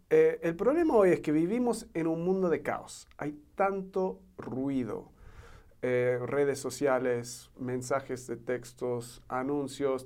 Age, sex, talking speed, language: 50-69, male, 130 wpm, Spanish